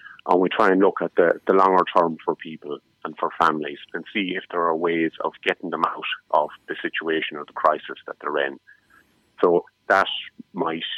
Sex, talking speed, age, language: male, 200 wpm, 30-49, English